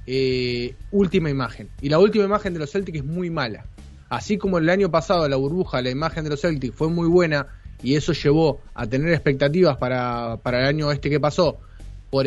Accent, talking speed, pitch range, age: Argentinian, 205 wpm, 130-170 Hz, 20-39